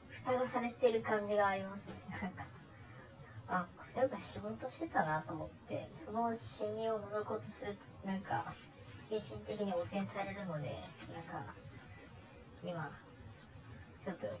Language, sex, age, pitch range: Japanese, male, 30-49, 110-180 Hz